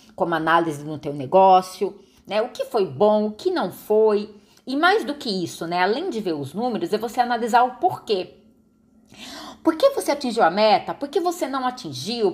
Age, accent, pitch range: 20-39, Brazilian, 190-270 Hz